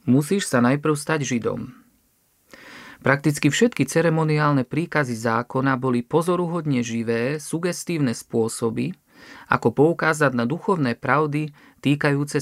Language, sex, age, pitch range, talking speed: Slovak, male, 40-59, 125-160 Hz, 100 wpm